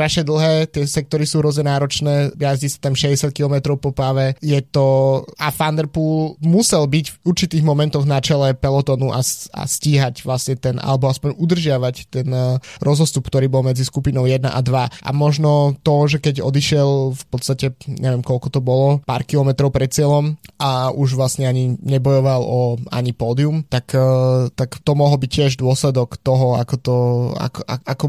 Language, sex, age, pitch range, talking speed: Slovak, male, 20-39, 130-150 Hz, 170 wpm